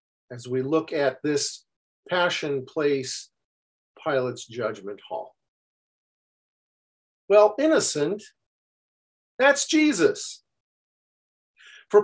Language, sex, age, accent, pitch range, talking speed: English, male, 50-69, American, 140-210 Hz, 75 wpm